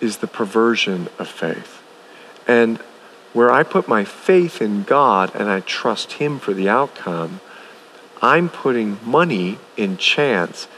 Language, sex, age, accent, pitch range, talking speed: English, male, 40-59, American, 100-125 Hz, 140 wpm